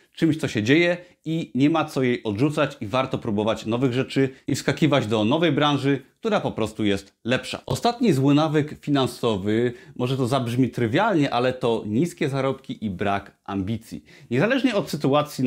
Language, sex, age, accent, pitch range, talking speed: Polish, male, 30-49, native, 115-150 Hz, 165 wpm